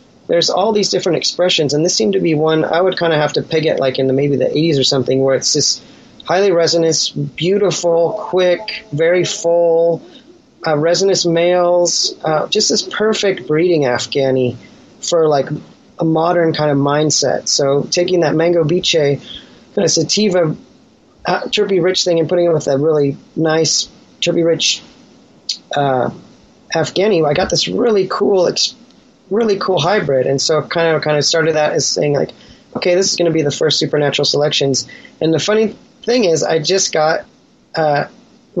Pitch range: 150-185 Hz